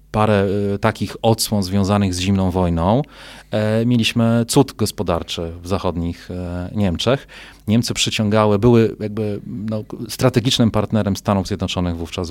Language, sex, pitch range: Polish, male, 95-115 Hz